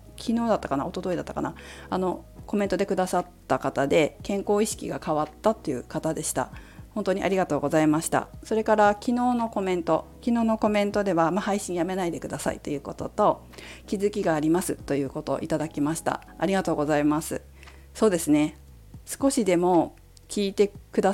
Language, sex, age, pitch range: Japanese, female, 40-59, 145-205 Hz